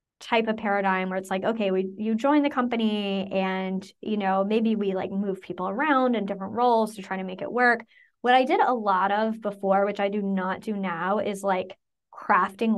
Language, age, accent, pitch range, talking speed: English, 20-39, American, 195-230 Hz, 215 wpm